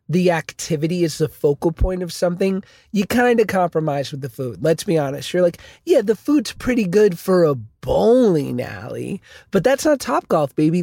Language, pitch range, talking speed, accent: English, 155-205 Hz, 195 wpm, American